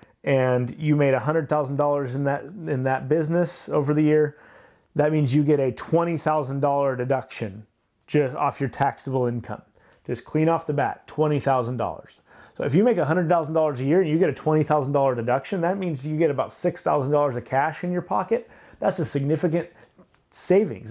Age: 30-49